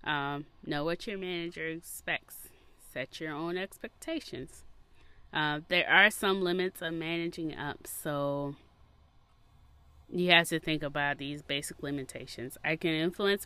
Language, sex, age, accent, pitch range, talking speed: English, female, 20-39, American, 130-160 Hz, 135 wpm